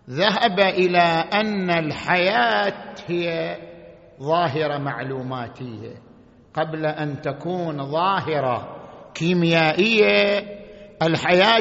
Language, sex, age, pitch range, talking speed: Arabic, male, 50-69, 150-205 Hz, 65 wpm